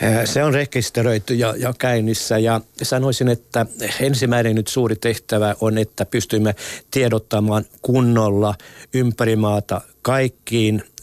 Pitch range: 105-120 Hz